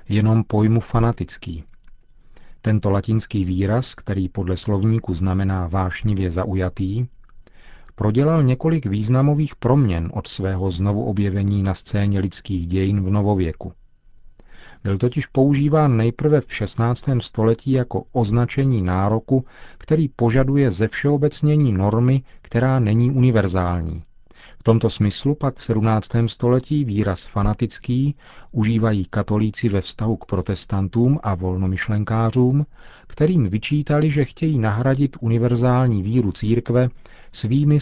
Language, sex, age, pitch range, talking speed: Czech, male, 40-59, 100-130 Hz, 110 wpm